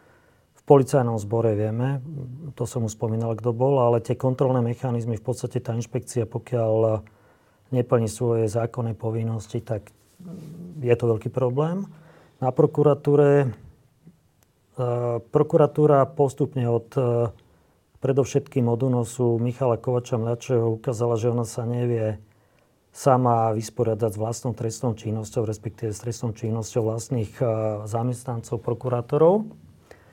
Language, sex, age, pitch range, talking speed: Slovak, male, 40-59, 115-130 Hz, 120 wpm